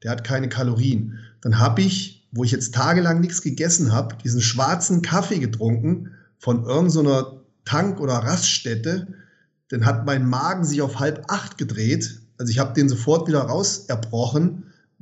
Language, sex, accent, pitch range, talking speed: German, male, German, 125-175 Hz, 160 wpm